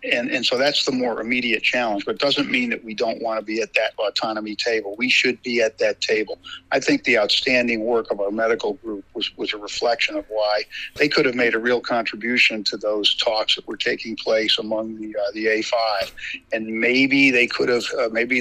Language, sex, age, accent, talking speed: English, male, 50-69, American, 225 wpm